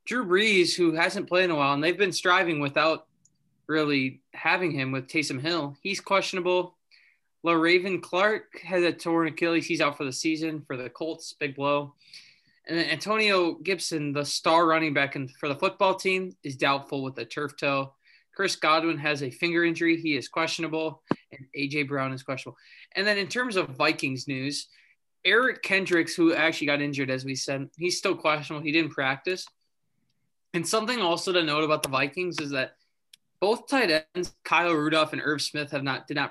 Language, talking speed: English, 185 wpm